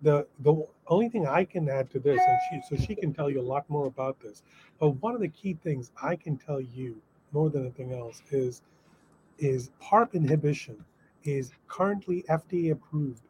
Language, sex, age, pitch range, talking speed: English, male, 30-49, 130-155 Hz, 195 wpm